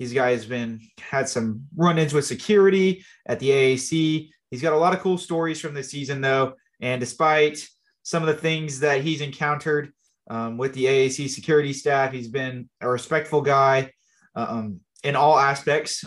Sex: male